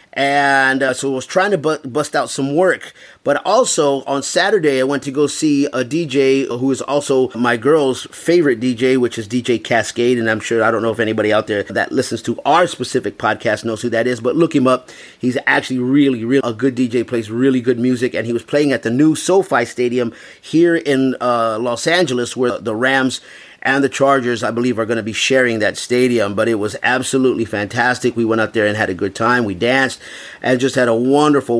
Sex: male